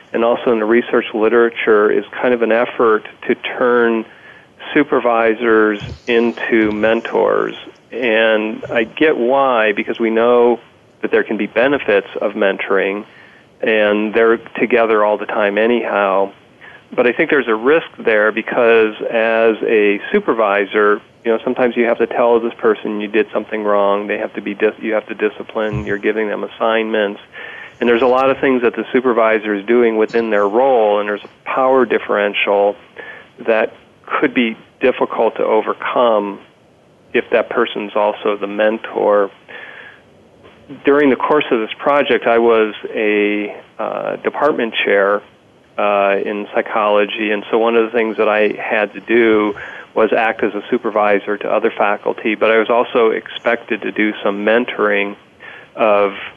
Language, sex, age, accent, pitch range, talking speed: English, male, 40-59, American, 105-120 Hz, 160 wpm